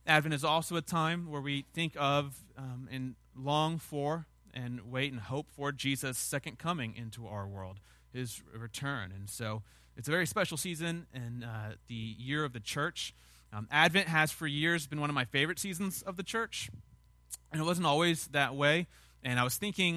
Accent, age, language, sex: American, 30-49, English, male